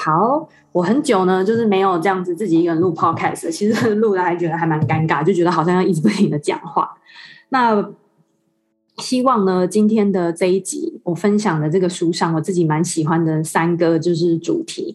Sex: female